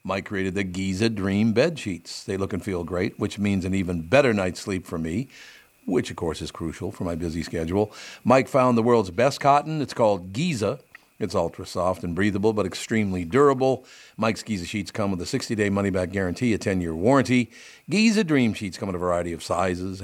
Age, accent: 50-69, American